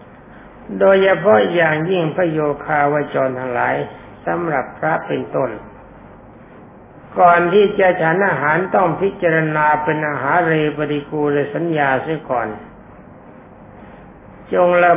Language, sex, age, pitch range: Thai, male, 60-79, 145-175 Hz